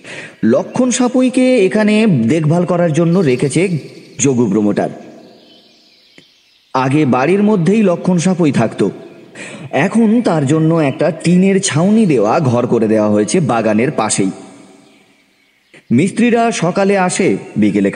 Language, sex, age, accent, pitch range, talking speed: Bengali, male, 30-49, native, 105-160 Hz, 35 wpm